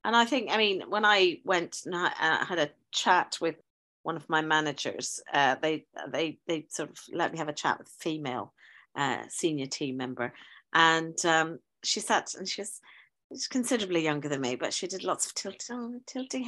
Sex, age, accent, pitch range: female, 40-59, British, 165-270 Hz